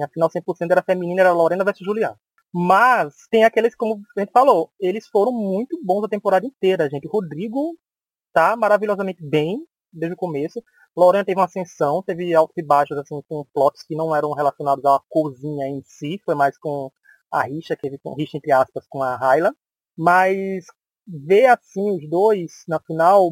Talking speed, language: 185 wpm, English